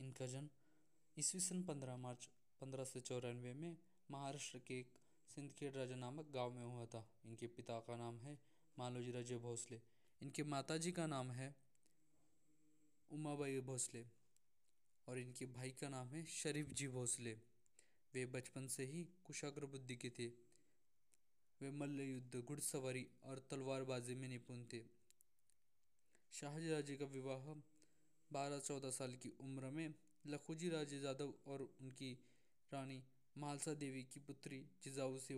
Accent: native